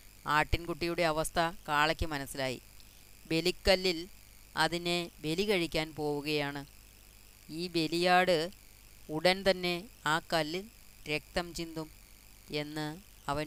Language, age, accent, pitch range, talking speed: Malayalam, 20-39, native, 130-175 Hz, 80 wpm